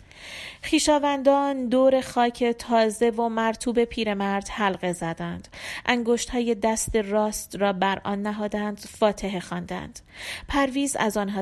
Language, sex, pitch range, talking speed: Persian, female, 190-255 Hz, 120 wpm